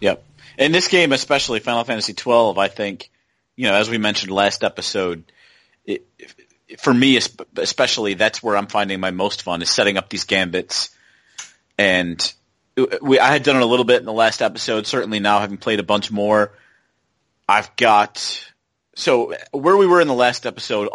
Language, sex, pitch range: English, male, 100-120 Hz